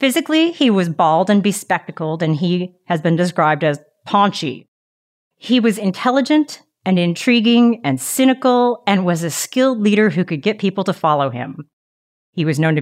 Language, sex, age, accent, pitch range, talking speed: English, female, 30-49, American, 170-225 Hz, 170 wpm